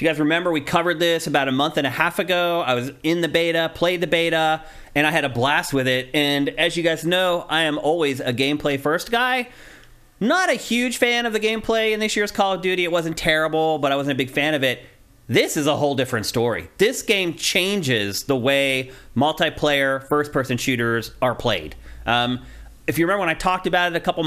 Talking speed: 225 wpm